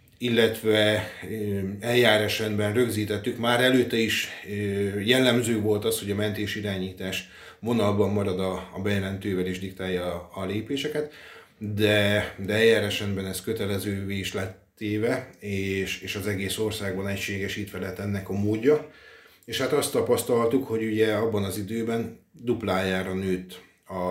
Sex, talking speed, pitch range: male, 125 wpm, 95-110 Hz